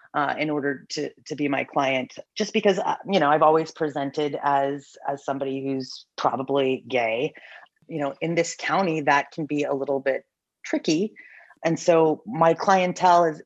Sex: female